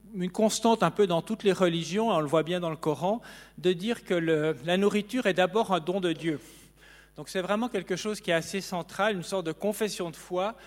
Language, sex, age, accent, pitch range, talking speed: French, male, 40-59, French, 155-205 Hz, 235 wpm